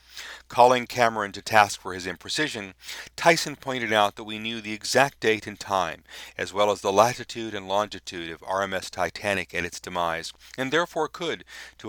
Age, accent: 40-59, American